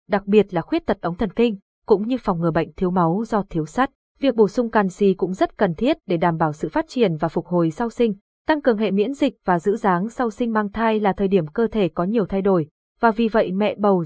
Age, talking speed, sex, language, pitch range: 20-39, 270 wpm, female, Vietnamese, 185-235 Hz